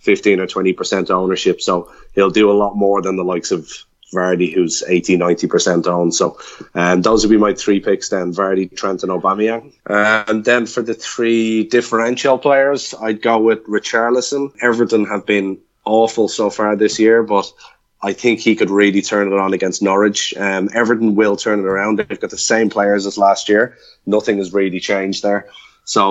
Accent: Irish